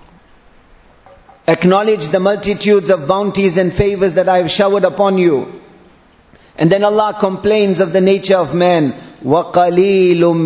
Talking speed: 140 wpm